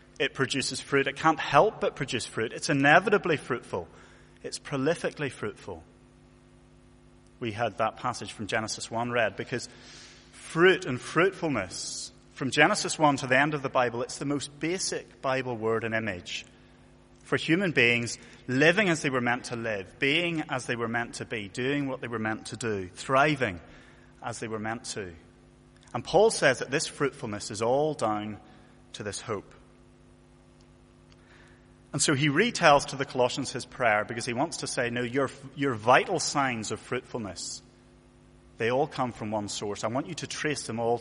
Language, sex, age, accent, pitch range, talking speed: English, male, 30-49, British, 115-140 Hz, 175 wpm